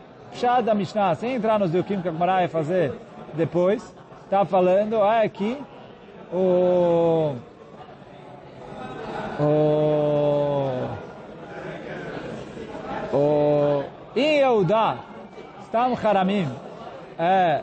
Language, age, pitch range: Portuguese, 40-59, 180-220 Hz